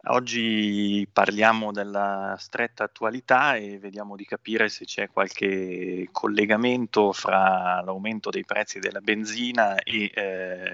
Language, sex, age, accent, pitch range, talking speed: Italian, male, 20-39, native, 95-110 Hz, 115 wpm